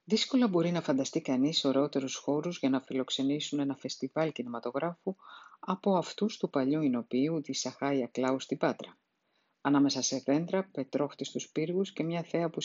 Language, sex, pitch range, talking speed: Greek, female, 140-200 Hz, 150 wpm